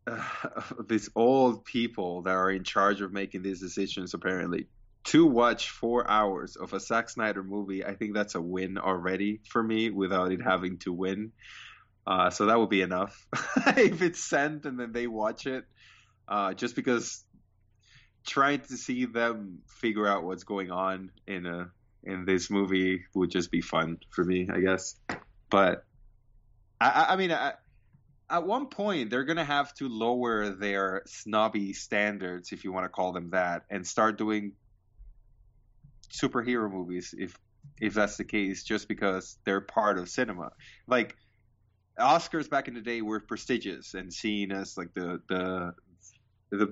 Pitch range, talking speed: 95-115 Hz, 165 wpm